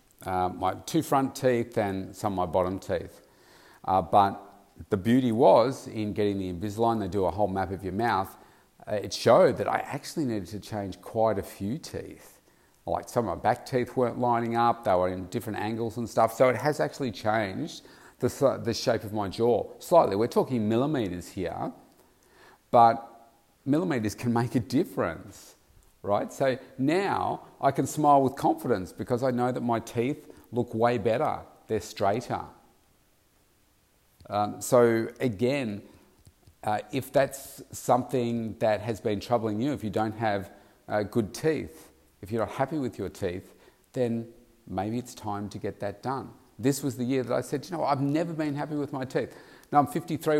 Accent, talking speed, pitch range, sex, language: Australian, 180 wpm, 100-130 Hz, male, English